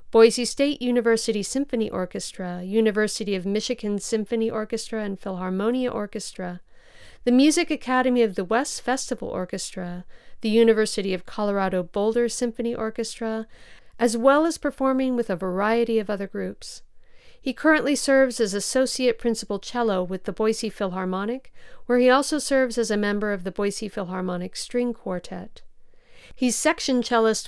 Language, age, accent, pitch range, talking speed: English, 50-69, American, 200-245 Hz, 140 wpm